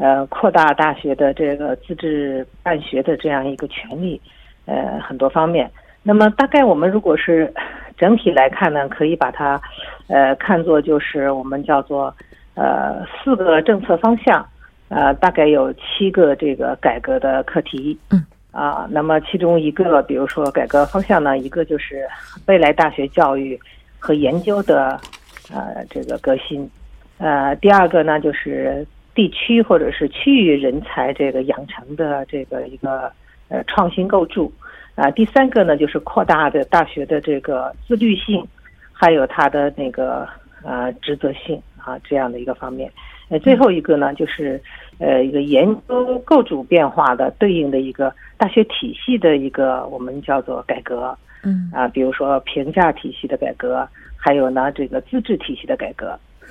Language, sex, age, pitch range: Korean, female, 50-69, 135-190 Hz